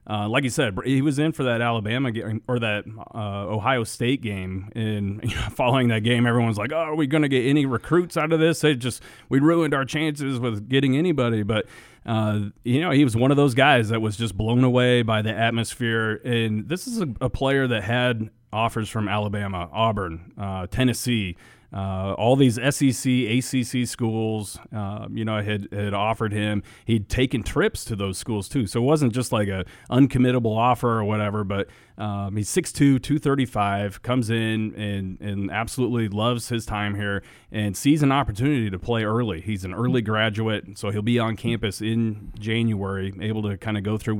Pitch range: 105-125 Hz